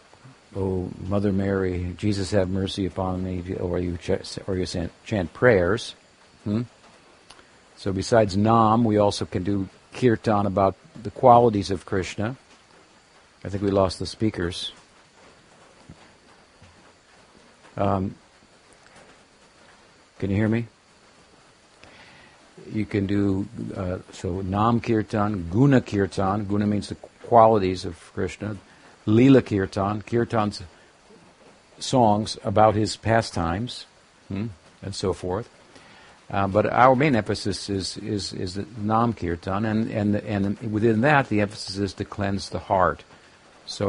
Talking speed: 120 wpm